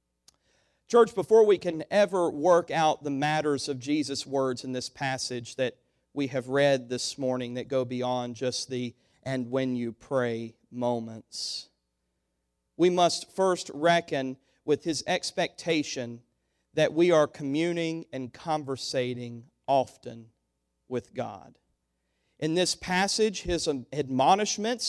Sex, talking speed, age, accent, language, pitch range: male, 125 wpm, 40-59, American, English, 130-200 Hz